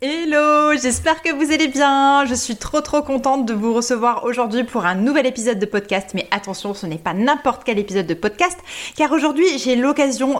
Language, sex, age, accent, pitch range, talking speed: French, female, 20-39, French, 200-260 Hz, 200 wpm